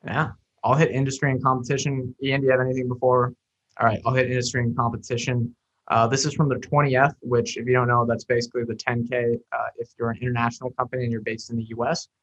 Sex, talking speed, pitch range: male, 225 wpm, 120-140 Hz